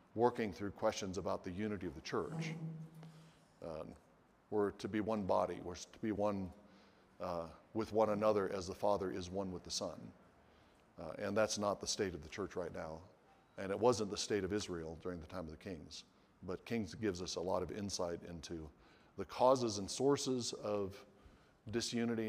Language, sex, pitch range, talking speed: English, male, 90-110 Hz, 190 wpm